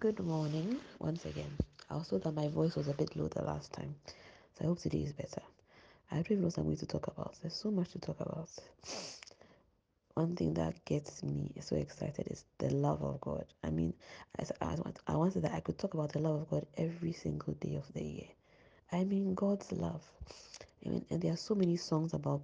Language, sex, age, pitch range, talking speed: English, female, 20-39, 135-180 Hz, 215 wpm